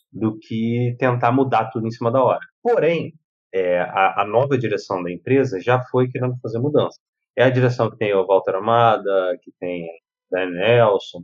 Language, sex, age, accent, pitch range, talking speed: Portuguese, male, 30-49, Brazilian, 110-140 Hz, 180 wpm